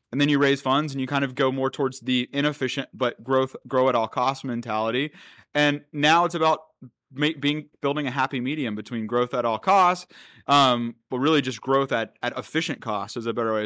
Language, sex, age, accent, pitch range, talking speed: English, male, 30-49, American, 120-150 Hz, 215 wpm